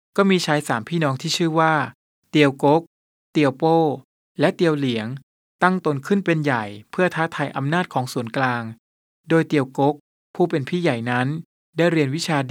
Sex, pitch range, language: male, 135-165 Hz, Thai